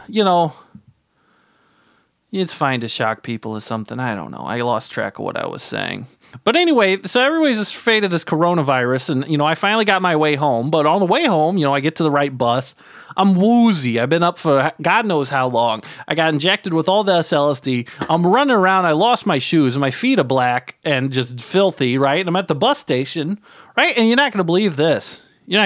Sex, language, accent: male, English, American